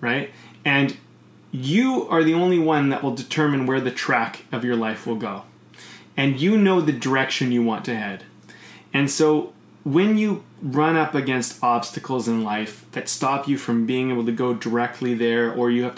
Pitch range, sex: 120-150 Hz, male